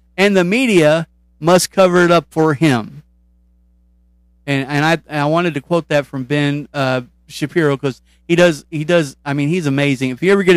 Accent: American